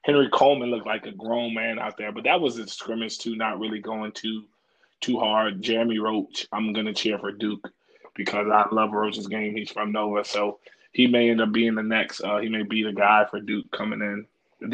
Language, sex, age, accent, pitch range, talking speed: English, male, 20-39, American, 105-115 Hz, 230 wpm